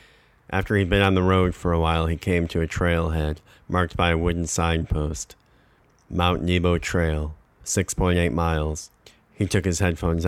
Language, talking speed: English, 165 wpm